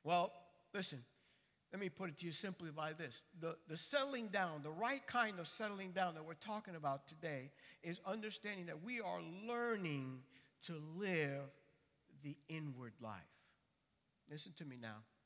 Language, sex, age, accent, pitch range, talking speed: English, male, 60-79, American, 145-215 Hz, 160 wpm